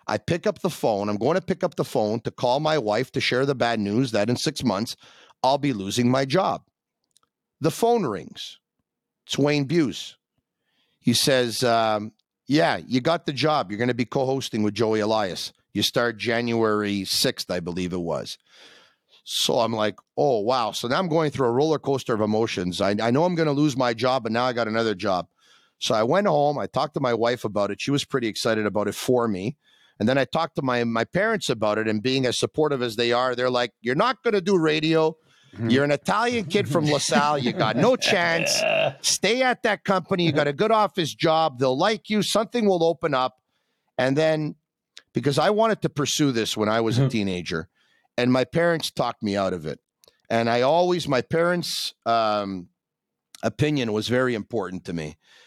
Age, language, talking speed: 40-59, English, 210 wpm